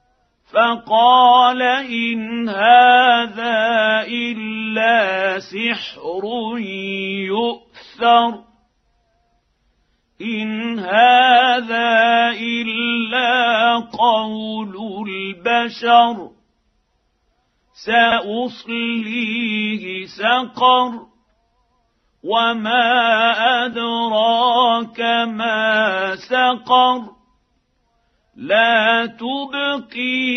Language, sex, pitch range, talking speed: Arabic, male, 220-245 Hz, 40 wpm